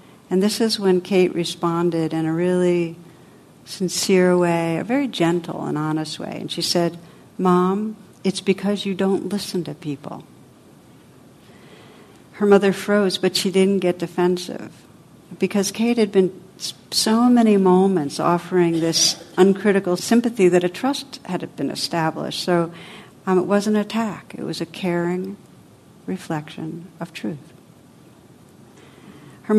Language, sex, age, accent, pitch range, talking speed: English, female, 60-79, American, 165-195 Hz, 135 wpm